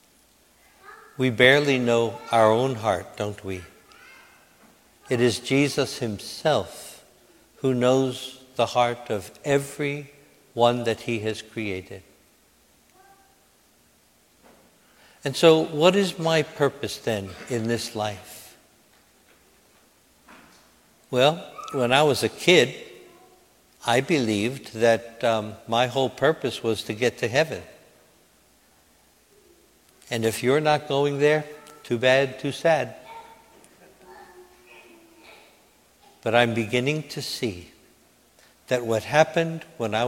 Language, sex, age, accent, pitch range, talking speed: English, male, 60-79, American, 115-145 Hz, 105 wpm